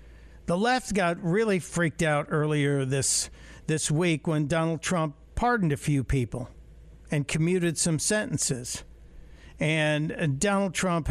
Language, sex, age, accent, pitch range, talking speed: English, male, 60-79, American, 125-185 Hz, 135 wpm